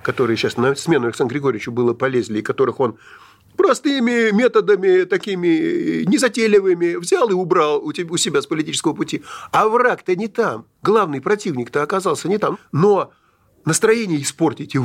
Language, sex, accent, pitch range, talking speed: Russian, male, native, 135-200 Hz, 150 wpm